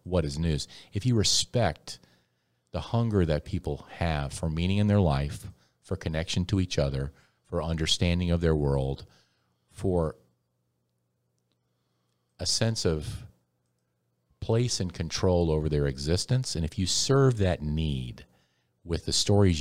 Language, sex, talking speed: English, male, 140 wpm